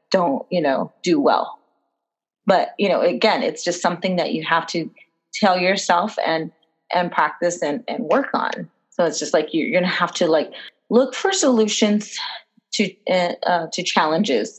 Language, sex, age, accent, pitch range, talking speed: English, female, 20-39, American, 170-215 Hz, 175 wpm